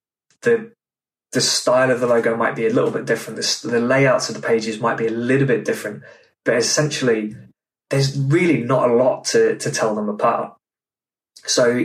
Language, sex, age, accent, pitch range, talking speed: English, male, 20-39, British, 115-150 Hz, 185 wpm